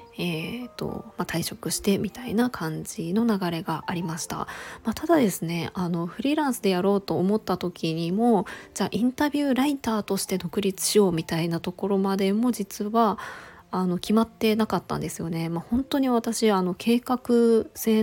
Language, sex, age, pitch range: Japanese, female, 20-39, 170-220 Hz